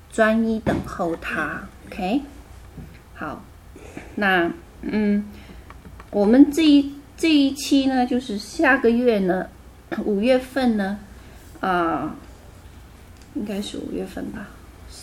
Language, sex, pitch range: Chinese, female, 185-265 Hz